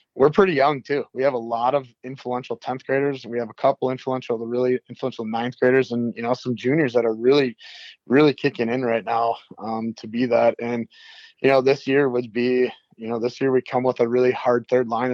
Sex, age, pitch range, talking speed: male, 20-39, 115-135 Hz, 230 wpm